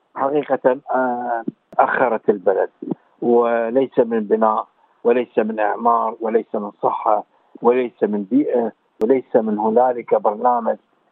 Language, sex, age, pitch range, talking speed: Arabic, male, 50-69, 110-140 Hz, 105 wpm